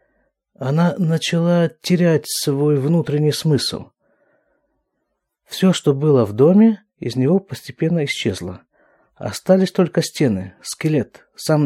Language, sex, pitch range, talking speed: Russian, male, 110-165 Hz, 105 wpm